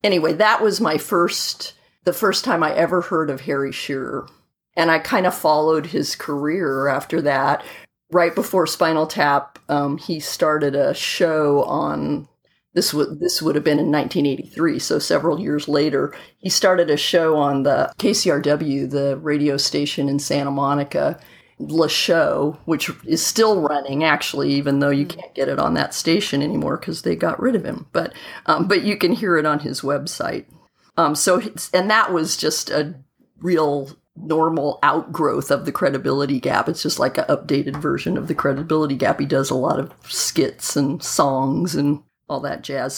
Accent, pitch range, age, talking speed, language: American, 145-180 Hz, 40-59, 175 wpm, English